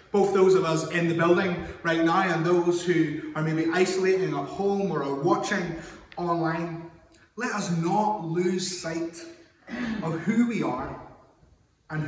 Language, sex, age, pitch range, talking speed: English, male, 20-39, 130-185 Hz, 155 wpm